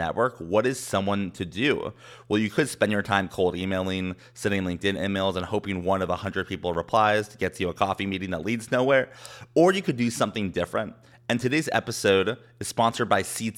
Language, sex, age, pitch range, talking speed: English, male, 30-49, 100-125 Hz, 210 wpm